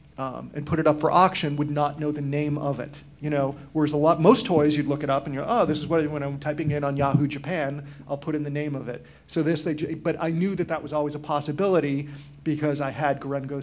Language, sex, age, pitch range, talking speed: English, male, 40-59, 140-150 Hz, 275 wpm